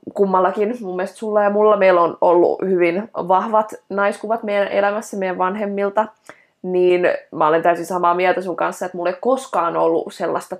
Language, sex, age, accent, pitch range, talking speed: Finnish, female, 20-39, native, 175-215 Hz, 165 wpm